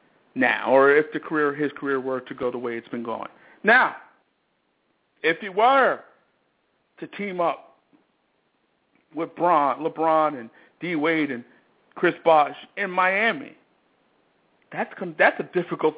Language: English